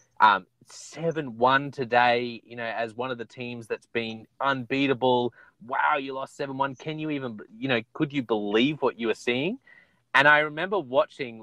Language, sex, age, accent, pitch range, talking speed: English, male, 30-49, Australian, 115-140 Hz, 175 wpm